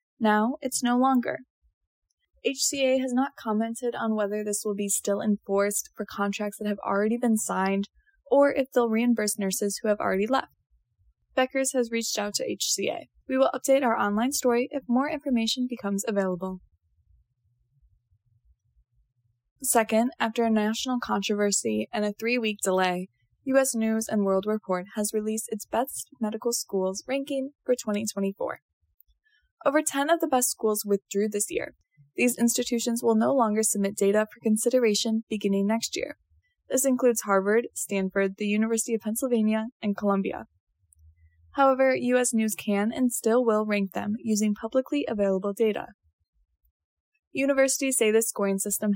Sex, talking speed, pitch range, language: female, 145 wpm, 195-245 Hz, English